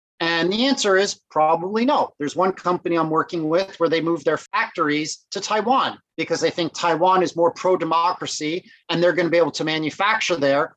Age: 30-49